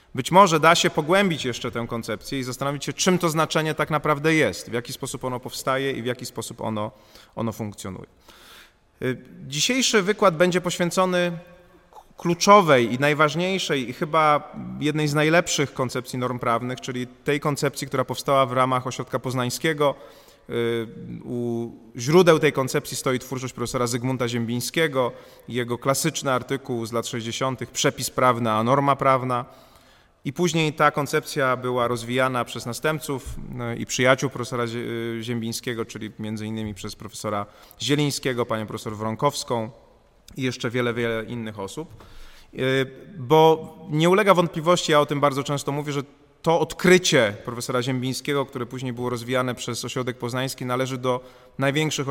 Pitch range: 120-150 Hz